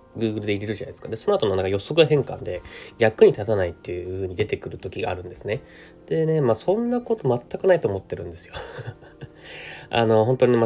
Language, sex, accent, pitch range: Japanese, male, native, 95-145 Hz